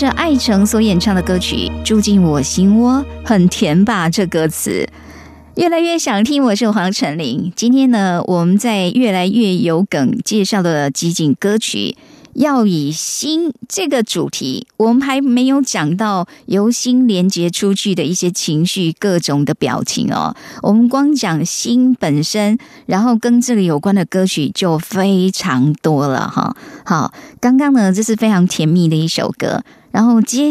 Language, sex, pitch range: Chinese, male, 170-240 Hz